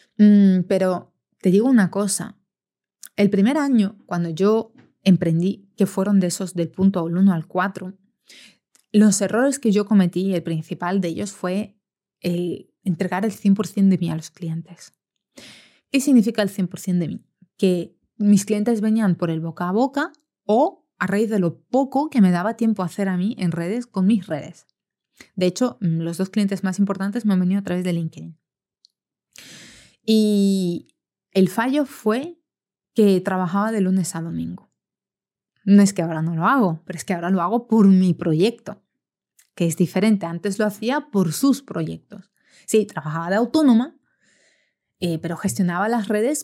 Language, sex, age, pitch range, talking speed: Spanish, female, 20-39, 180-220 Hz, 170 wpm